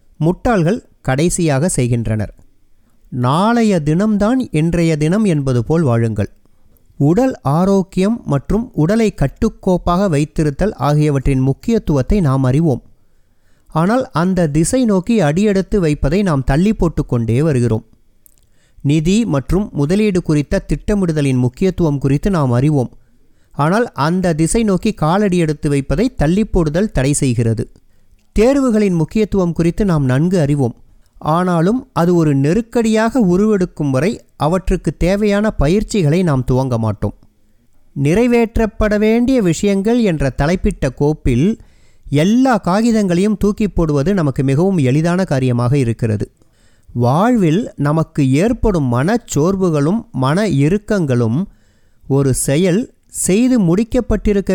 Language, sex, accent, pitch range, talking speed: Tamil, male, native, 135-205 Hz, 100 wpm